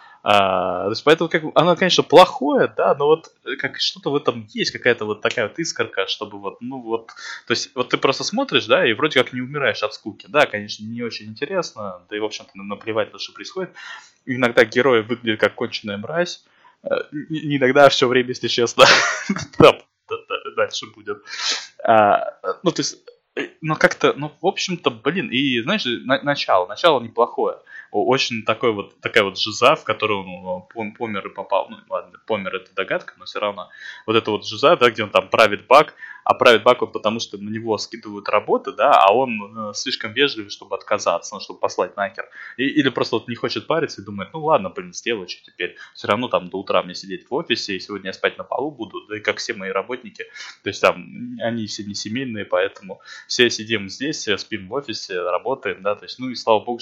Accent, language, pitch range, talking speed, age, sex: native, Russian, 105-160 Hz, 195 wpm, 20-39, male